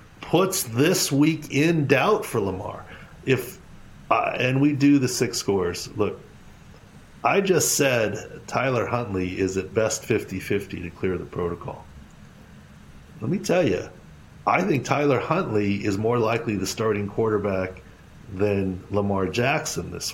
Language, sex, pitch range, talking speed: English, male, 100-135 Hz, 145 wpm